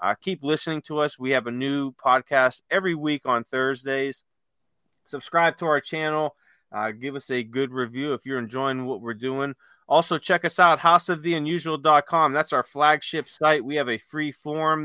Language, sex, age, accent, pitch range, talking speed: English, male, 40-59, American, 125-160 Hz, 180 wpm